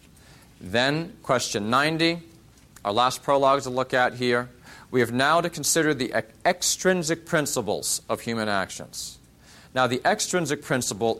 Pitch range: 105-130 Hz